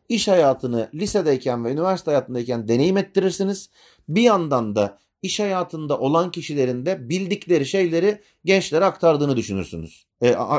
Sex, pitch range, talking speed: male, 120-185 Hz, 125 wpm